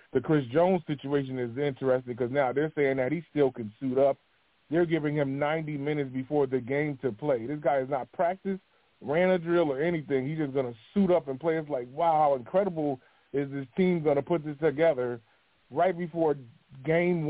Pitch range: 130-170 Hz